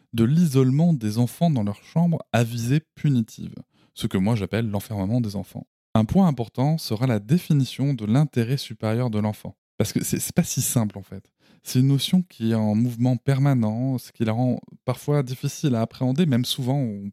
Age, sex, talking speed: 20-39, male, 200 wpm